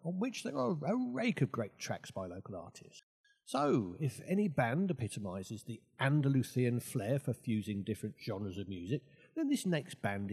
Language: English